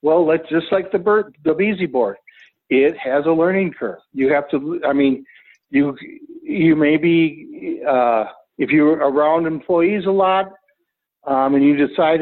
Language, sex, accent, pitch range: English, male, American, 135-170 Hz